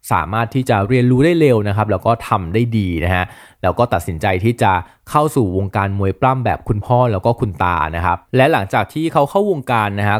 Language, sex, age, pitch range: Thai, male, 20-39, 95-125 Hz